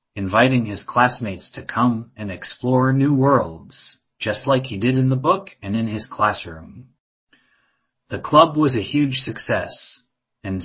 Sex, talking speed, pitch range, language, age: male, 150 wpm, 100-130 Hz, English, 30-49